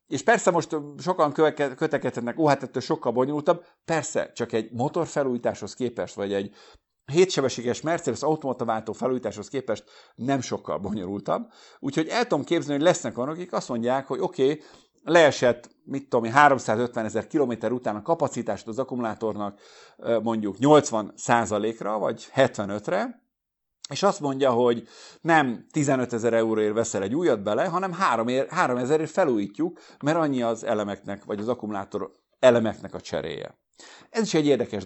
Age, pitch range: 50-69, 110-145 Hz